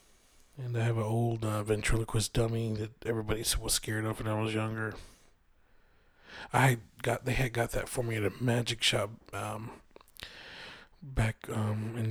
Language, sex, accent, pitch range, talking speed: English, male, American, 110-125 Hz, 165 wpm